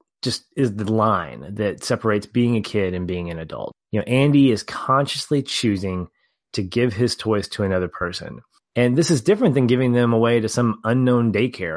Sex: male